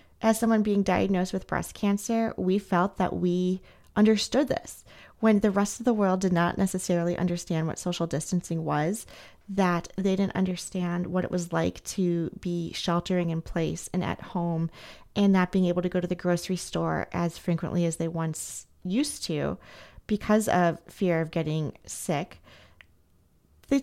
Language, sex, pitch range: English, female, 175-215 Hz